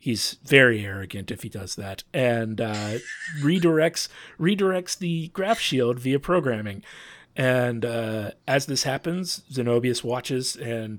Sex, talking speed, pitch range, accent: male, 130 wpm, 110-140 Hz, American